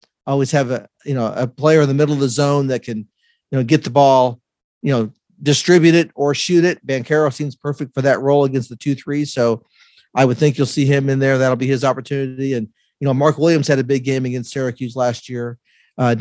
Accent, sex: American, male